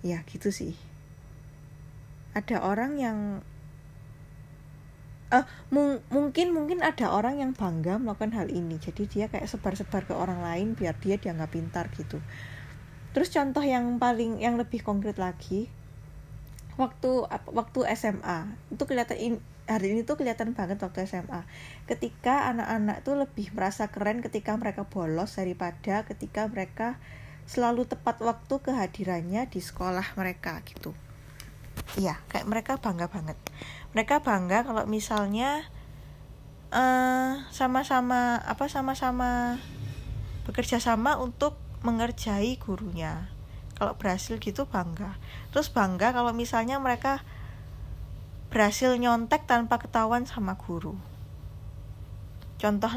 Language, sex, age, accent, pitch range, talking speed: Indonesian, female, 10-29, native, 150-240 Hz, 120 wpm